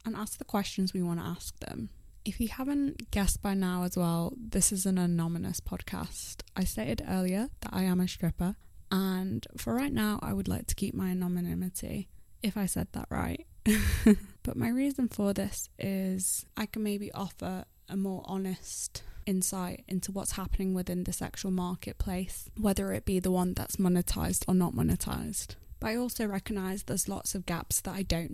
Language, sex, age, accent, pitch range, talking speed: English, female, 10-29, British, 180-205 Hz, 185 wpm